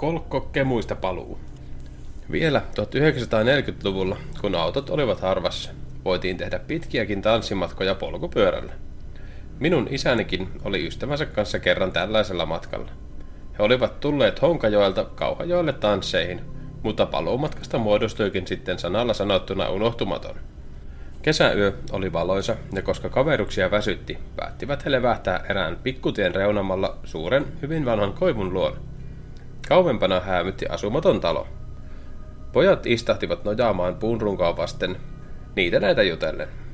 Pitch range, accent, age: 90-125 Hz, native, 30-49